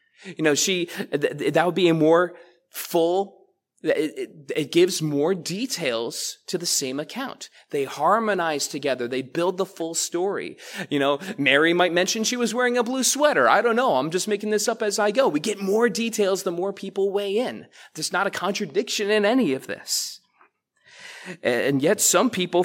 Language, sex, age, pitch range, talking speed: English, male, 30-49, 160-220 Hz, 185 wpm